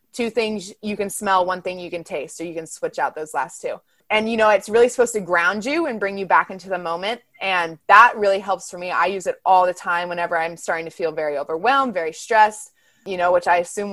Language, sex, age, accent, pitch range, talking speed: English, female, 20-39, American, 180-230 Hz, 260 wpm